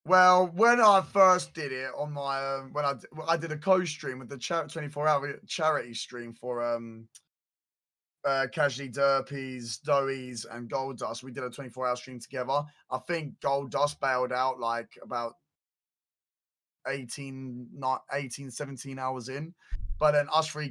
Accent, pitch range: British, 125-155 Hz